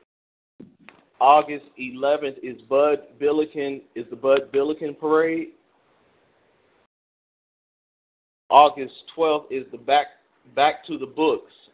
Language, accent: English, American